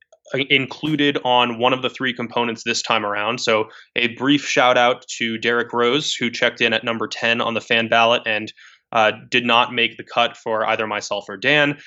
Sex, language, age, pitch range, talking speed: male, English, 20-39, 115-145 Hz, 200 wpm